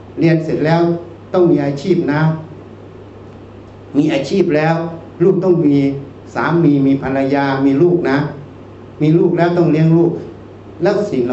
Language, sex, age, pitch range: Thai, male, 60-79, 115-160 Hz